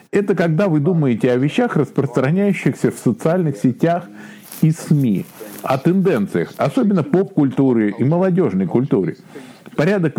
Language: Russian